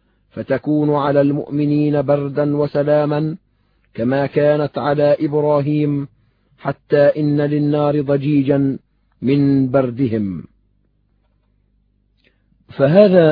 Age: 40-59